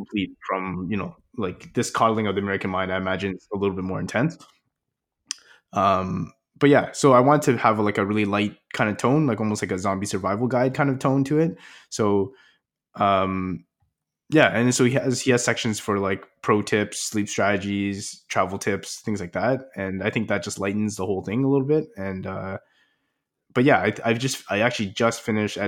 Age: 20-39